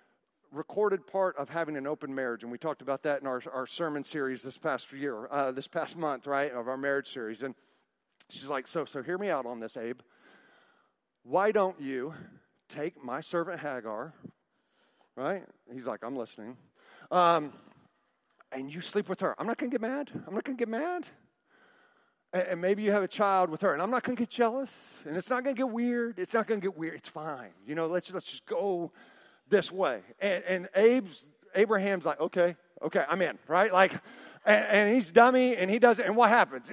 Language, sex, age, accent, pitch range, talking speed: English, male, 40-59, American, 160-225 Hz, 215 wpm